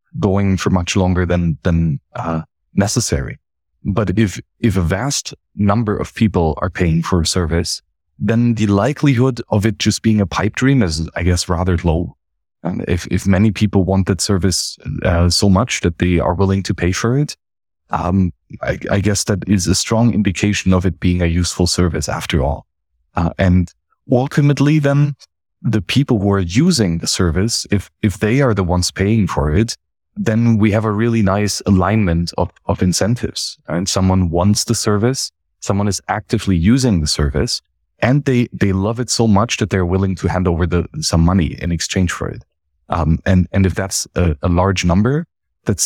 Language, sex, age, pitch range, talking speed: English, male, 20-39, 85-110 Hz, 190 wpm